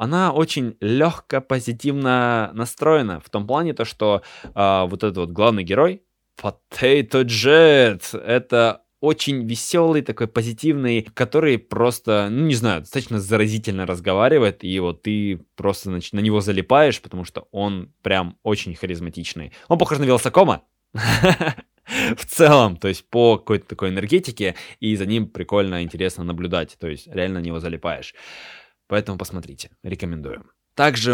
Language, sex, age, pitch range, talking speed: Russian, male, 20-39, 95-120 Hz, 140 wpm